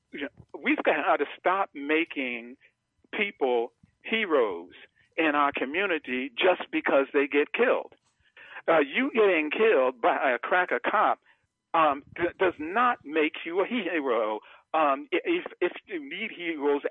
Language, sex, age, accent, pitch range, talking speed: English, male, 50-69, American, 135-215 Hz, 135 wpm